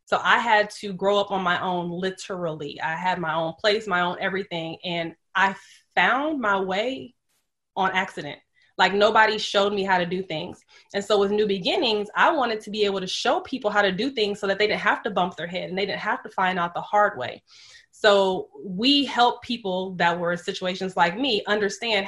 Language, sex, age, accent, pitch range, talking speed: English, female, 20-39, American, 185-210 Hz, 215 wpm